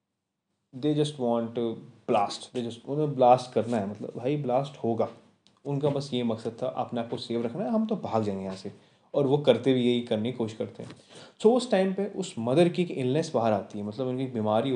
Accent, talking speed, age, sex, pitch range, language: native, 235 wpm, 20-39, male, 115-135 Hz, Hindi